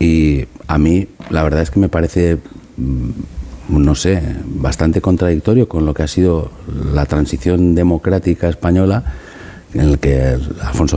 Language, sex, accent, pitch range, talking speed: Spanish, male, Spanish, 80-125 Hz, 140 wpm